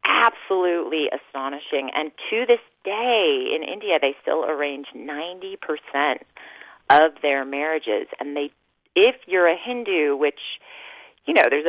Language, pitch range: English, 150-200 Hz